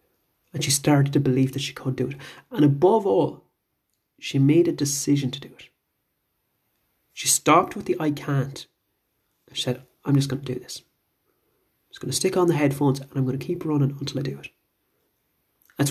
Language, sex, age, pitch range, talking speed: English, male, 30-49, 135-155 Hz, 200 wpm